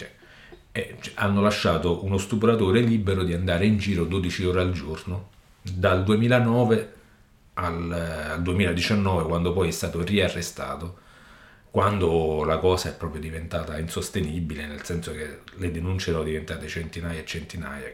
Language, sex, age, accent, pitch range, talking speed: Italian, male, 40-59, native, 80-95 Hz, 135 wpm